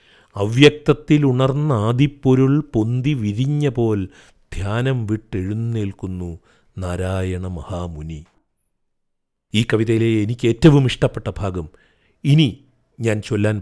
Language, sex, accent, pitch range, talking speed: Malayalam, male, native, 95-125 Hz, 85 wpm